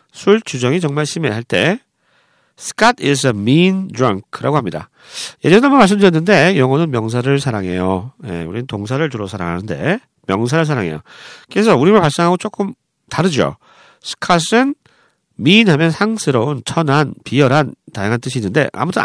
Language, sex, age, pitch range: Korean, male, 40-59, 125-205 Hz